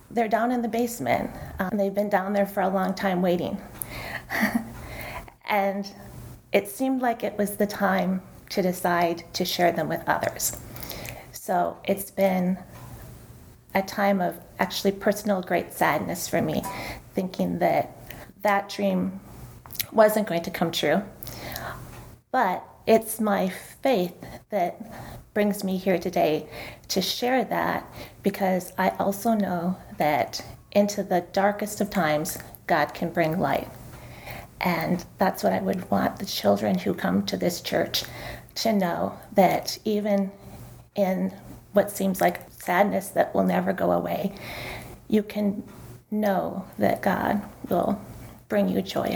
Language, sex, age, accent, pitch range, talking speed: English, female, 30-49, American, 180-205 Hz, 140 wpm